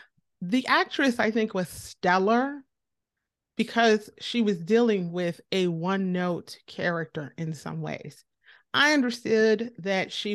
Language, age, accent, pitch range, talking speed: English, 30-49, American, 190-230 Hz, 120 wpm